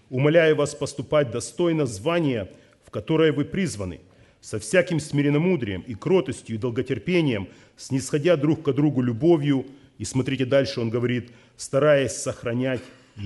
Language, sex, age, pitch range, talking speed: Russian, male, 40-59, 110-145 Hz, 125 wpm